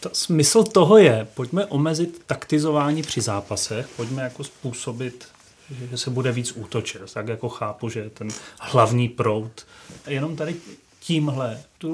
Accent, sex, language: native, male, Czech